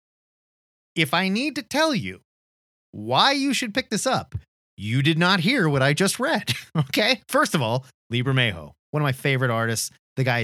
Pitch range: 105-145 Hz